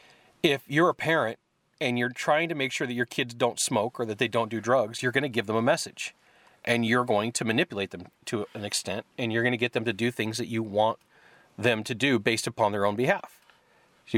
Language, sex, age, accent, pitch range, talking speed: English, male, 30-49, American, 115-145 Hz, 245 wpm